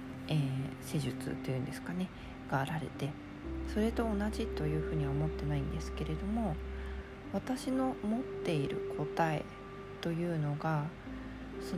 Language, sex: Japanese, female